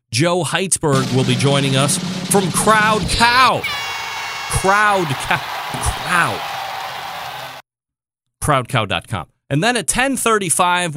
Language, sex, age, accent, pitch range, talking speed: English, male, 40-59, American, 125-170 Hz, 100 wpm